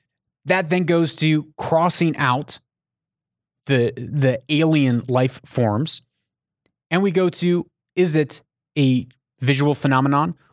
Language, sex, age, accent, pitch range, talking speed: English, male, 30-49, American, 125-160 Hz, 115 wpm